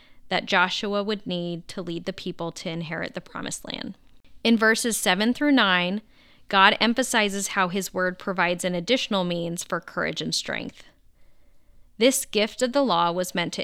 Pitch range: 180-215 Hz